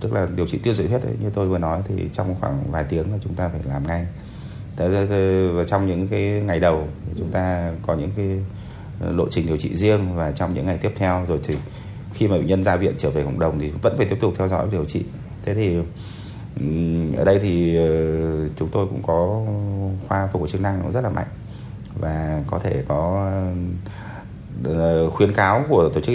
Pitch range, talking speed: 85-105 Hz, 215 wpm